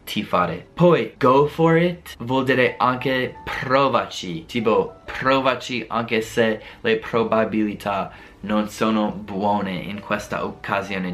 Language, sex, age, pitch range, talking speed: Italian, male, 20-39, 110-135 Hz, 120 wpm